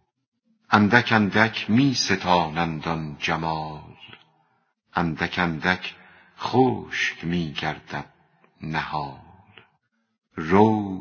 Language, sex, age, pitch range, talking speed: Persian, female, 50-69, 85-110 Hz, 60 wpm